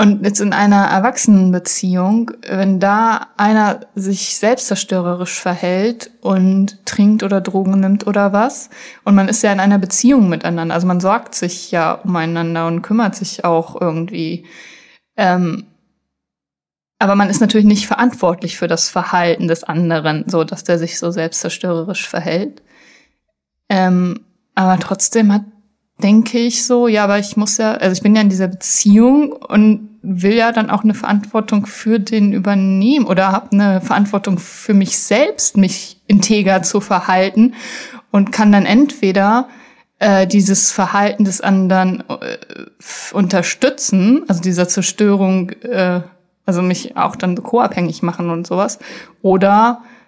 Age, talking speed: 20-39, 145 wpm